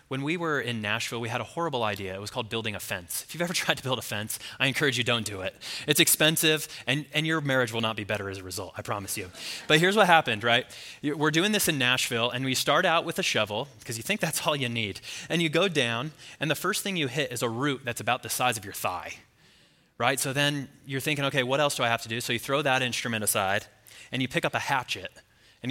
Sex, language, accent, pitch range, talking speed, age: male, English, American, 110-140 Hz, 270 wpm, 20-39